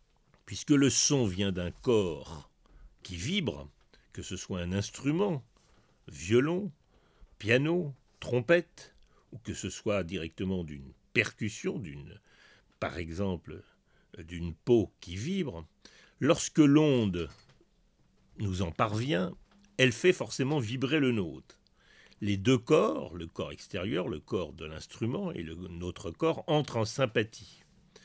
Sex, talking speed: male, 125 wpm